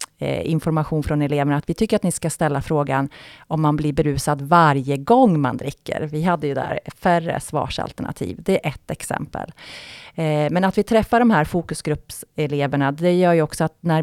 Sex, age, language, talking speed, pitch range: female, 30-49, Swedish, 180 wpm, 150-175 Hz